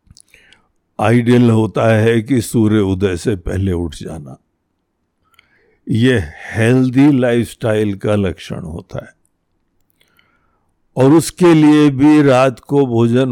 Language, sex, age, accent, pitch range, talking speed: Hindi, male, 60-79, native, 100-140 Hz, 110 wpm